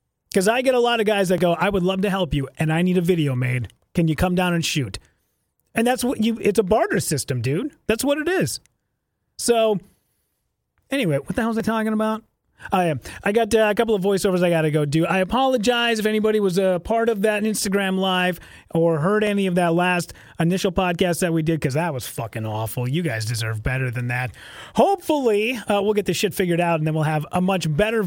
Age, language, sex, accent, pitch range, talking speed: 30-49, English, male, American, 165-220 Hz, 235 wpm